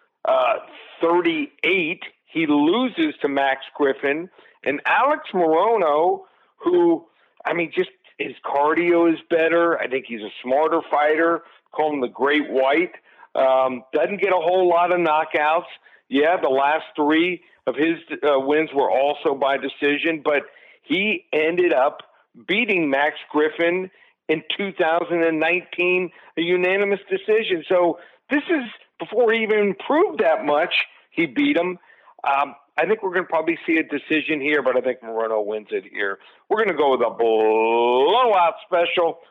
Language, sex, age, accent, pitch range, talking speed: English, male, 50-69, American, 140-185 Hz, 150 wpm